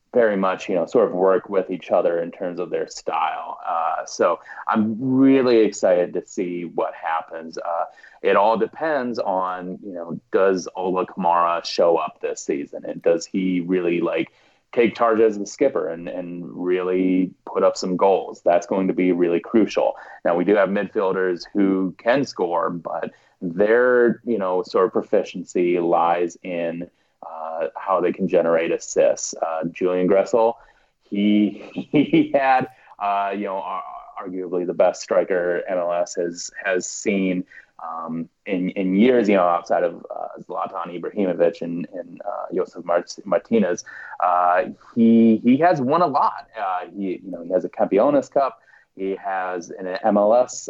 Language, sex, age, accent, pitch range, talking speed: English, male, 30-49, American, 90-115 Hz, 165 wpm